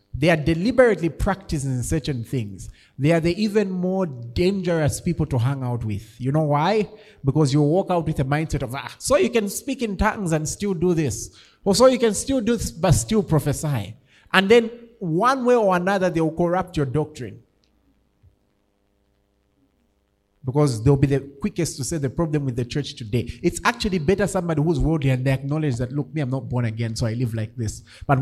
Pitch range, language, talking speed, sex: 105-165 Hz, English, 200 wpm, male